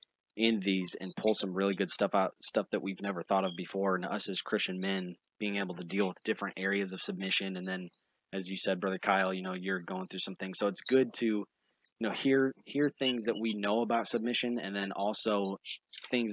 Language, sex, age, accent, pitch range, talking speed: English, male, 20-39, American, 95-105 Hz, 230 wpm